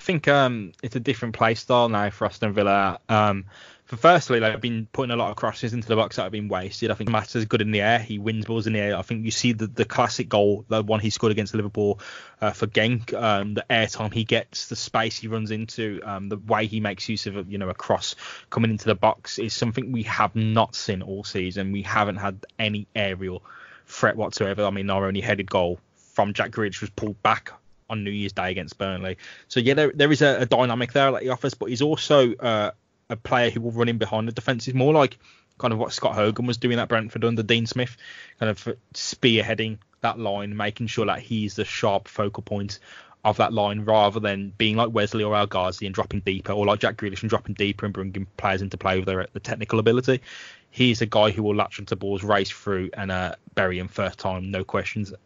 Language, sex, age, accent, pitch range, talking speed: English, male, 10-29, British, 100-115 Hz, 235 wpm